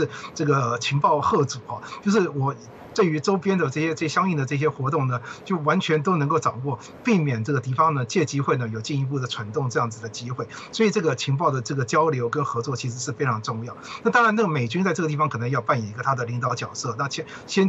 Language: Chinese